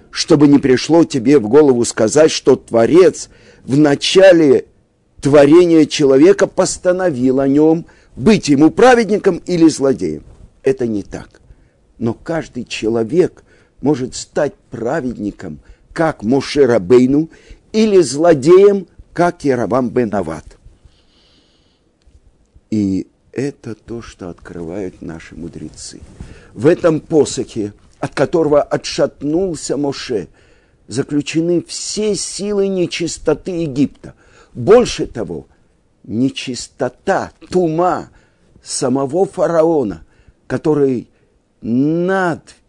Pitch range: 110-170 Hz